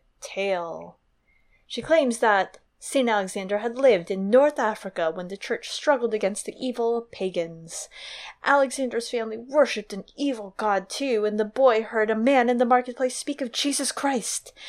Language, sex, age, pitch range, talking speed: English, female, 20-39, 215-280 Hz, 160 wpm